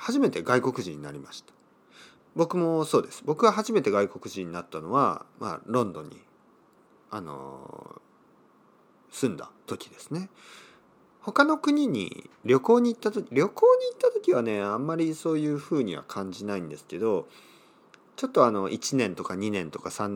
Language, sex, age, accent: Japanese, male, 40-59, native